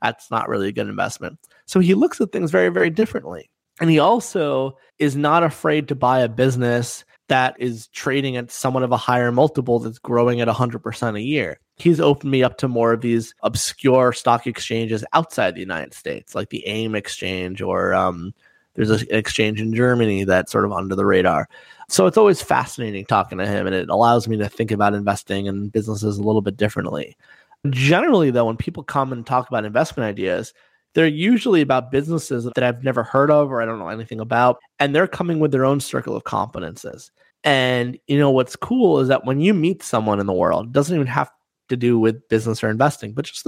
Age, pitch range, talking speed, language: 20-39, 110-140 Hz, 210 wpm, English